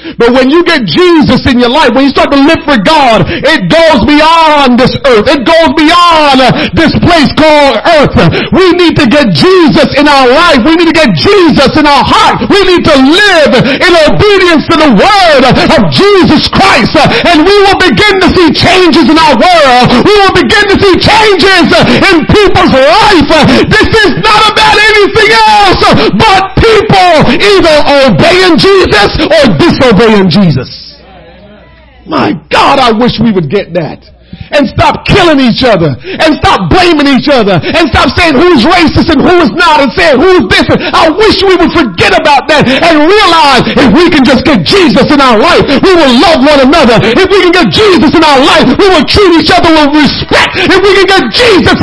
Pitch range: 280-370 Hz